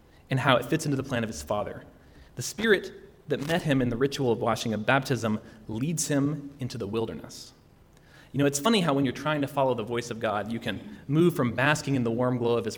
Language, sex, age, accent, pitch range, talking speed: English, male, 30-49, American, 115-145 Hz, 245 wpm